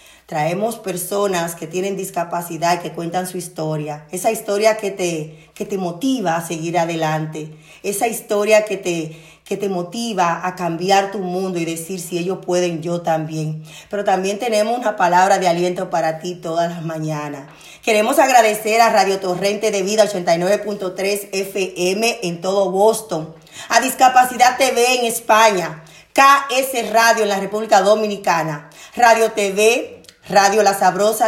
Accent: American